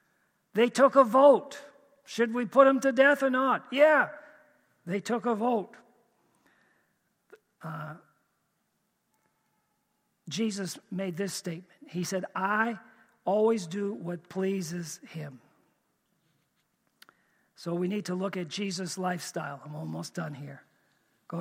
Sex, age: male, 50-69